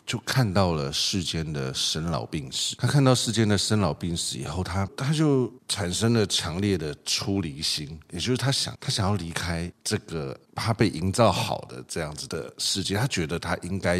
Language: Chinese